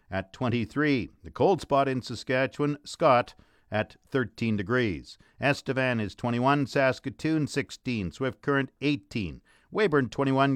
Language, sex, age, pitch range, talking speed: English, male, 50-69, 125-155 Hz, 120 wpm